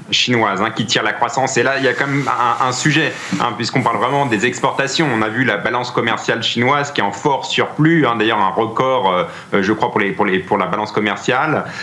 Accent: French